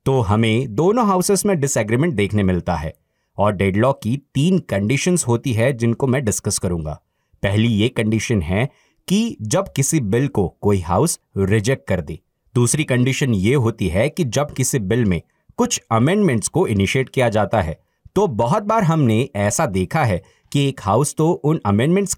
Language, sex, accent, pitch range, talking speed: Hindi, male, native, 105-155 Hz, 175 wpm